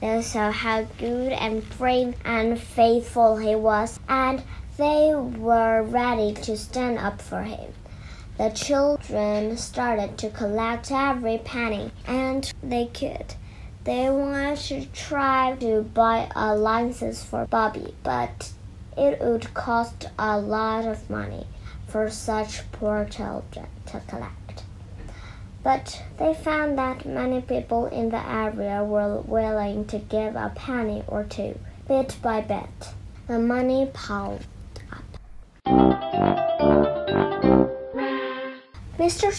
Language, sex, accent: Chinese, male, American